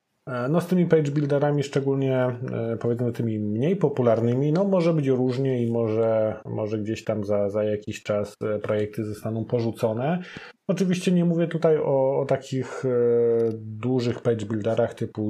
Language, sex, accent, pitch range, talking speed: Polish, male, native, 110-135 Hz, 140 wpm